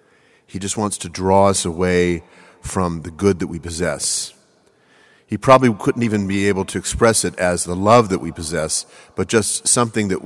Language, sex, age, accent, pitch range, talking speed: English, male, 40-59, American, 90-110 Hz, 185 wpm